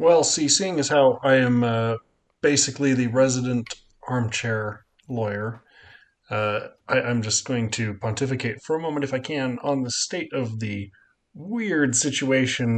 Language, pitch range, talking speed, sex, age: English, 115-140 Hz, 155 wpm, male, 30-49